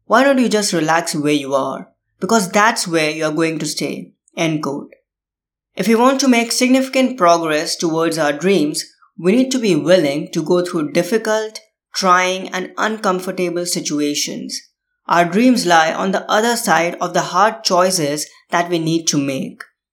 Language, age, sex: English, 20-39, female